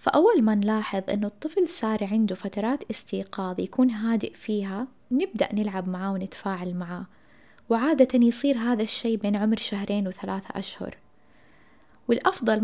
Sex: female